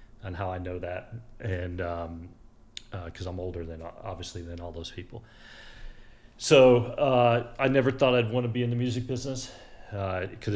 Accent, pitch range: American, 90-115 Hz